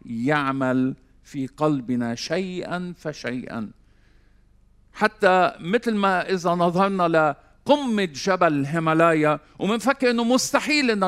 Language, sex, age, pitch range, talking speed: Arabic, male, 50-69, 120-185 Hz, 90 wpm